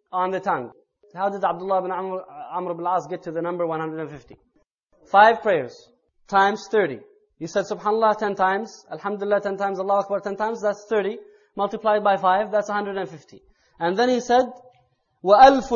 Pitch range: 190-235 Hz